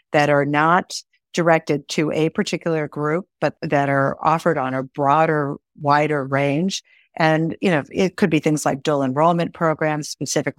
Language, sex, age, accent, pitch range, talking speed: English, female, 50-69, American, 145-180 Hz, 165 wpm